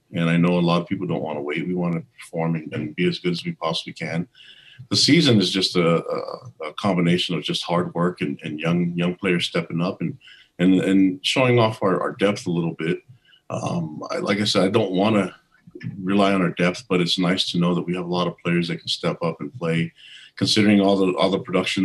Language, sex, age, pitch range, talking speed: English, male, 40-59, 85-100 Hz, 250 wpm